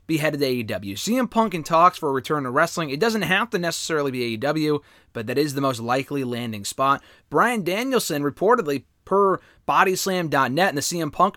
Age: 30-49